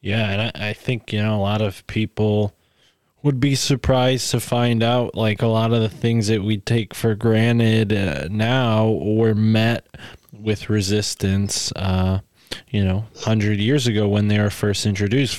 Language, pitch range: English, 100-120 Hz